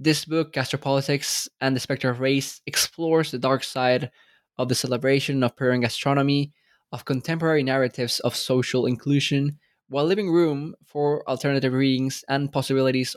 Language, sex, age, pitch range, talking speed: English, male, 20-39, 125-140 Hz, 145 wpm